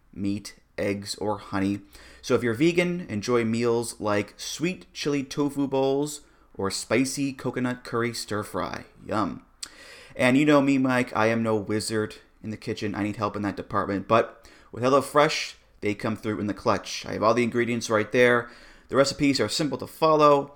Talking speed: 185 wpm